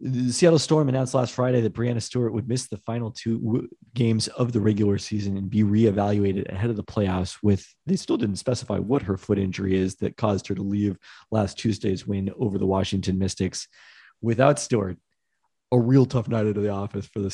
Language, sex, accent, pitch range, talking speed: English, male, American, 100-120 Hz, 210 wpm